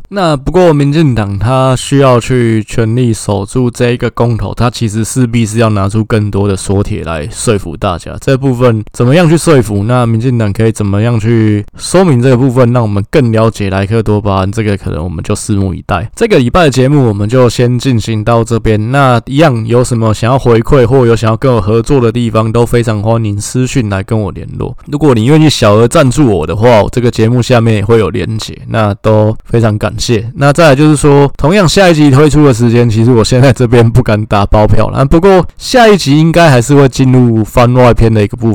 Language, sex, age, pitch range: Chinese, male, 20-39, 110-135 Hz